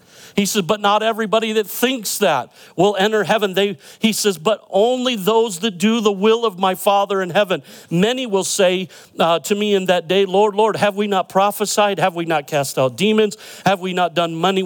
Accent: American